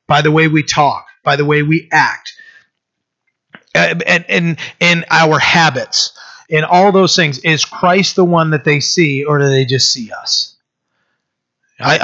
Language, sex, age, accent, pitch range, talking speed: English, male, 30-49, American, 140-170 Hz, 170 wpm